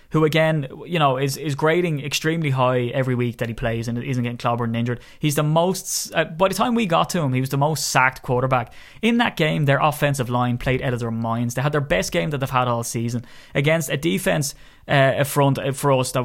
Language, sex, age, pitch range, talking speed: English, male, 20-39, 125-160 Hz, 245 wpm